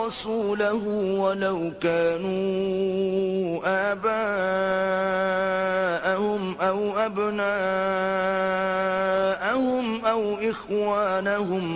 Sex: male